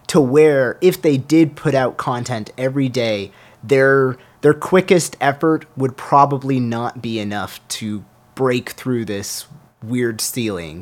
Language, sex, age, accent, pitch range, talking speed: English, male, 30-49, American, 110-145 Hz, 140 wpm